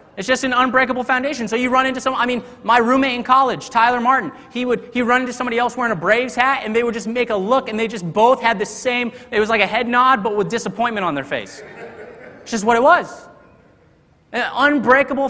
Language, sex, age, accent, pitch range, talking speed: English, male, 30-49, American, 190-250 Hz, 245 wpm